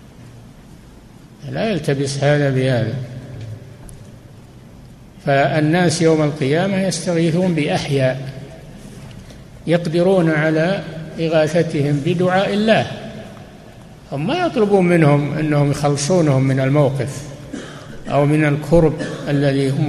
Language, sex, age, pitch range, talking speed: Arabic, male, 60-79, 145-170 Hz, 80 wpm